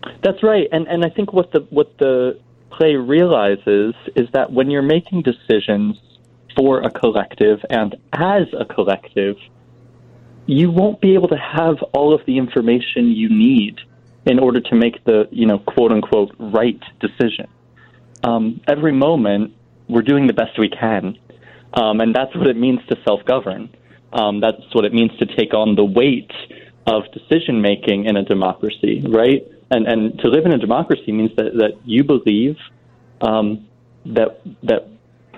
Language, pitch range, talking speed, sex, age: English, 105-130 Hz, 160 wpm, male, 20-39